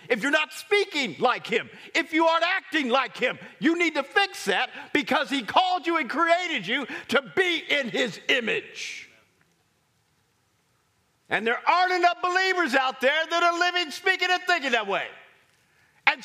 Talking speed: 165 wpm